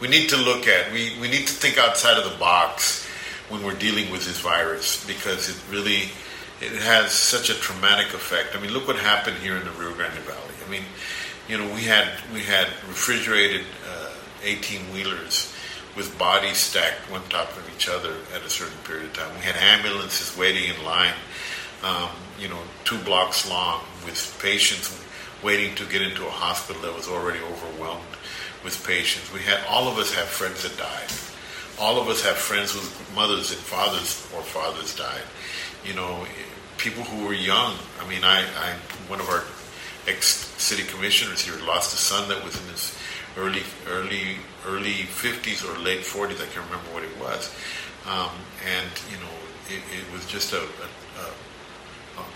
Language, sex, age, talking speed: English, male, 50-69, 180 wpm